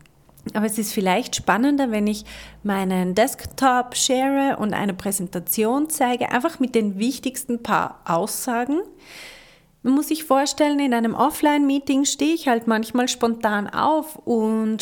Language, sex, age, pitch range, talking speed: German, female, 30-49, 195-260 Hz, 140 wpm